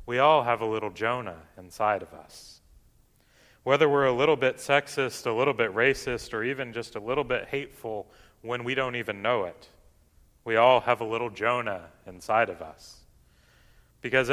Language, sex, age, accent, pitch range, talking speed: English, male, 30-49, American, 100-135 Hz, 175 wpm